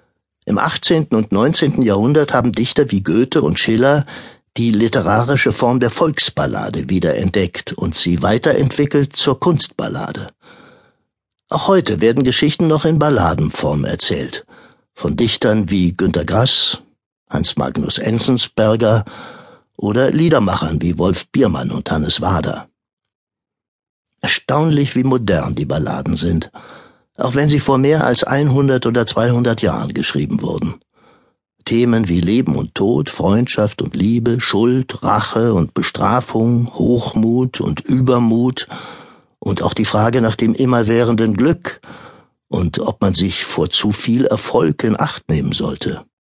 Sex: male